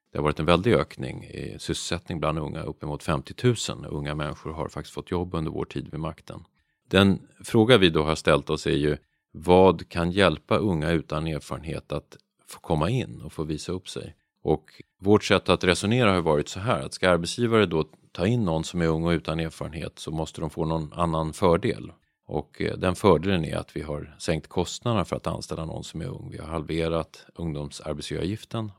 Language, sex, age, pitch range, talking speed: Swedish, male, 30-49, 75-95 Hz, 200 wpm